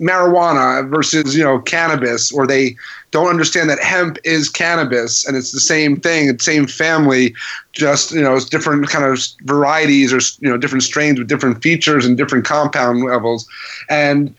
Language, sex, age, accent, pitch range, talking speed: English, male, 30-49, American, 135-165 Hz, 175 wpm